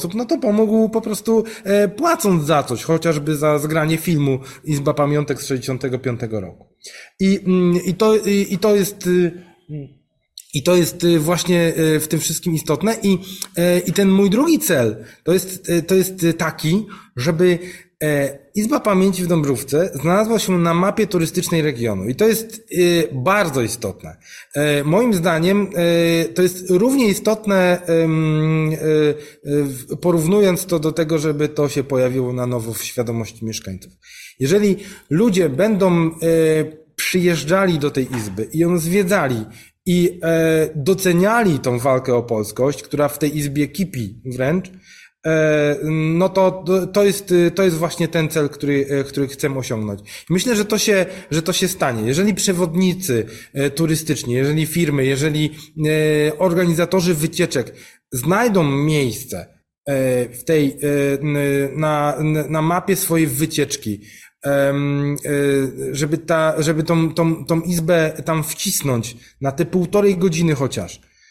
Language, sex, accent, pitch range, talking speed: Polish, male, native, 145-185 Hz, 120 wpm